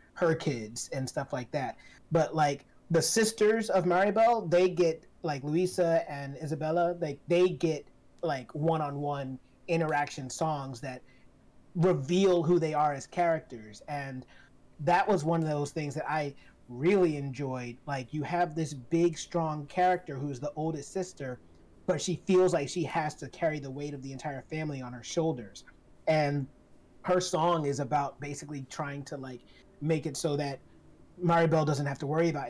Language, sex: English, male